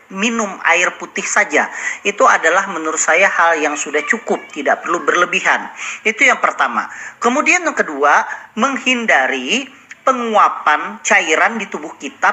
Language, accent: Indonesian, native